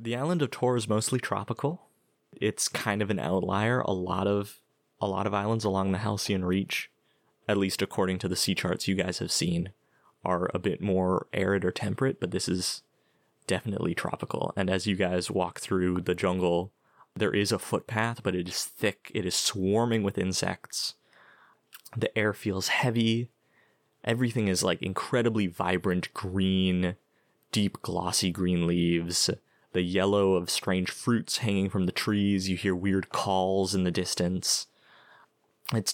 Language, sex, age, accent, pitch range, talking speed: English, male, 20-39, American, 90-110 Hz, 165 wpm